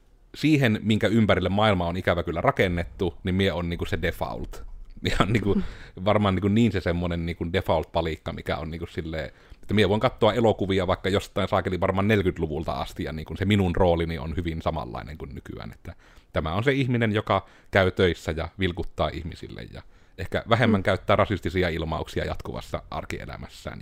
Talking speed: 170 wpm